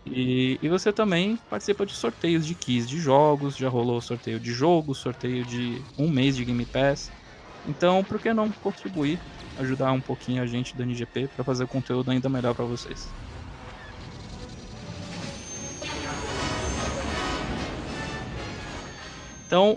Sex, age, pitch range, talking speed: male, 20-39, 125-180 Hz, 135 wpm